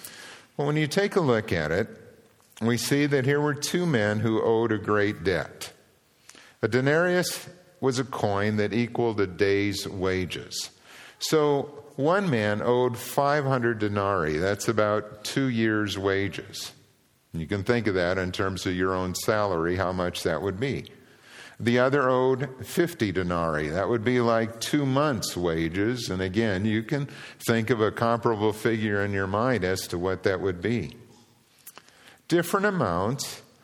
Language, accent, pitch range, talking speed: English, American, 105-145 Hz, 160 wpm